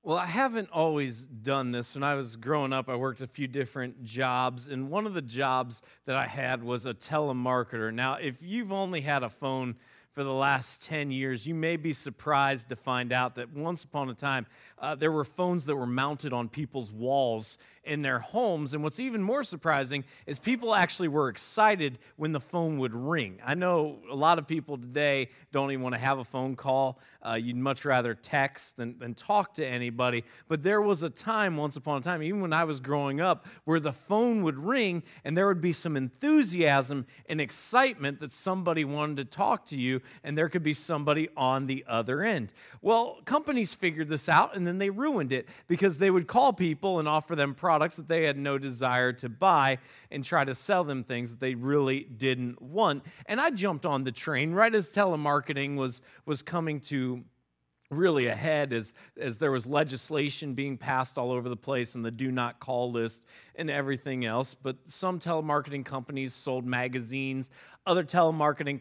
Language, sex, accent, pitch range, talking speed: English, male, American, 130-165 Hz, 200 wpm